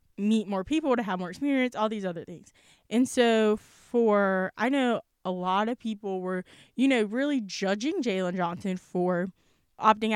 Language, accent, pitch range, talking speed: English, American, 185-245 Hz, 170 wpm